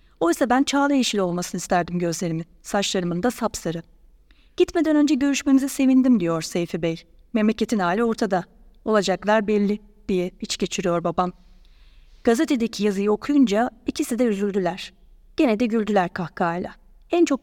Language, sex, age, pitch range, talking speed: Turkish, female, 30-49, 185-255 Hz, 130 wpm